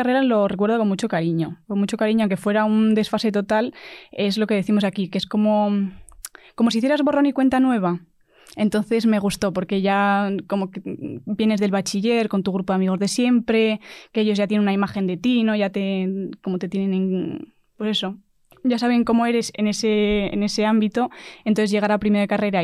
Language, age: Spanish, 20-39